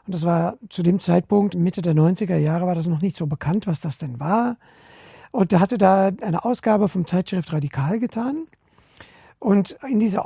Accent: German